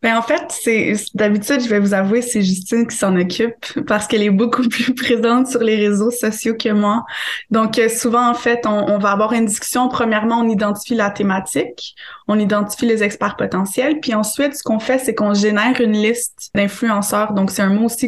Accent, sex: Canadian, female